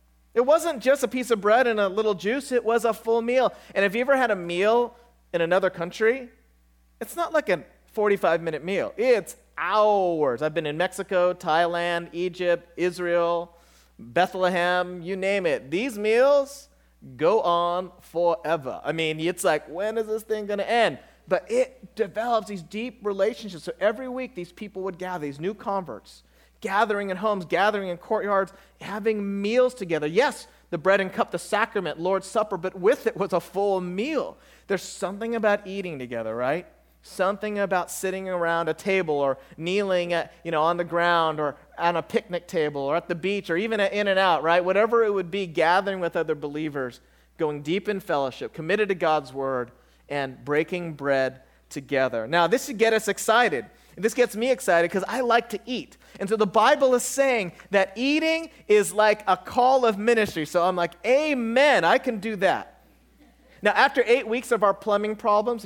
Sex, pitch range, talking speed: male, 170-220 Hz, 185 wpm